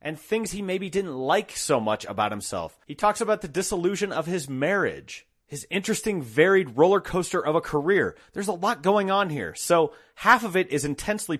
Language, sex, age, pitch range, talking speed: English, male, 30-49, 130-185 Hz, 200 wpm